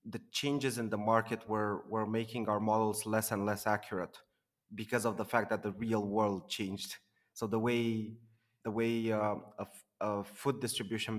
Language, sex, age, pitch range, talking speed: English, male, 30-49, 105-120 Hz, 180 wpm